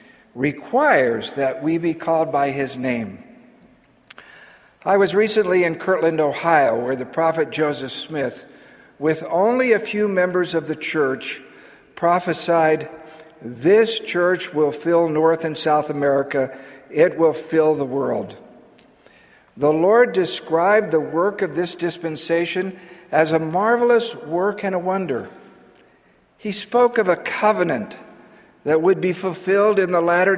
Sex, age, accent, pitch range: male, 60-79, American, 150-185 Hz